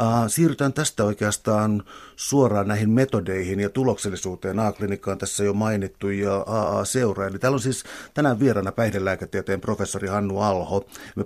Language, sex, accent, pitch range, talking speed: Finnish, male, native, 100-115 Hz, 135 wpm